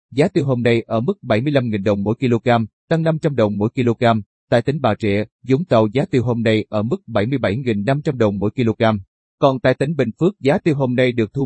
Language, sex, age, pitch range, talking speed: Vietnamese, male, 30-49, 115-140 Hz, 220 wpm